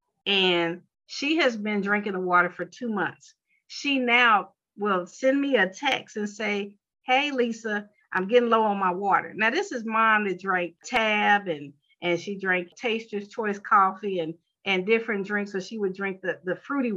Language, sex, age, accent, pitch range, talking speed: English, female, 50-69, American, 180-220 Hz, 185 wpm